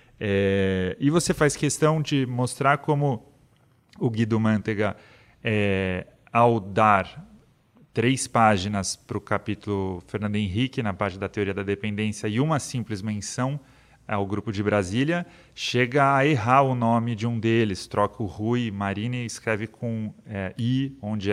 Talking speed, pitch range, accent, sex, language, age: 150 wpm, 105-130 Hz, Brazilian, male, Portuguese, 30-49